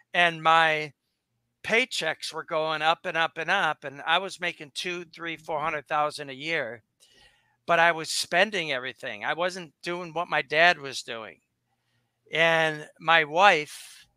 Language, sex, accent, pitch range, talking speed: English, male, American, 150-180 Hz, 155 wpm